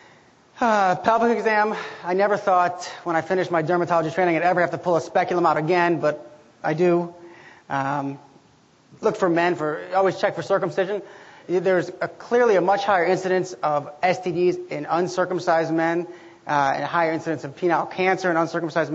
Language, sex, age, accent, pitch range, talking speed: English, male, 30-49, American, 165-185 Hz, 175 wpm